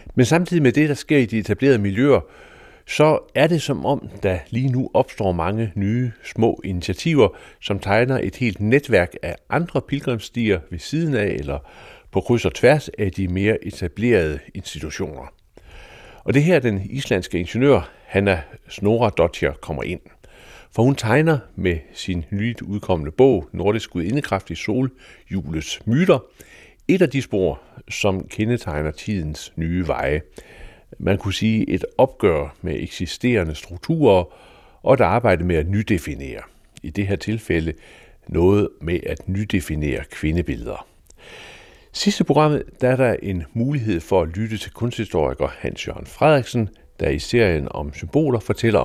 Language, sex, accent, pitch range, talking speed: Danish, male, native, 90-130 Hz, 150 wpm